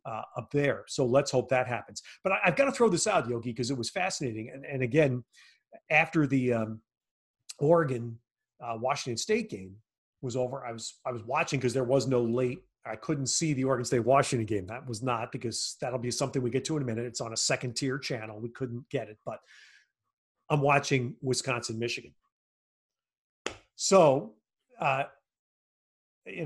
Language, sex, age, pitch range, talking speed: English, male, 40-59, 120-150 Hz, 185 wpm